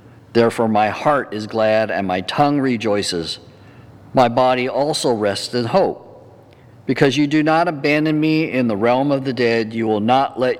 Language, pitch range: English, 115-145 Hz